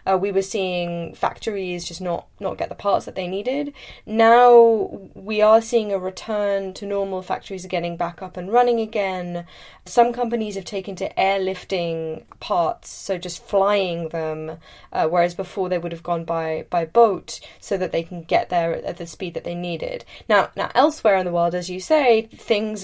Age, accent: 10-29, British